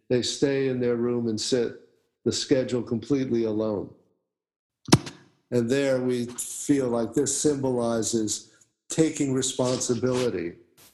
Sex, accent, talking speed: male, American, 110 wpm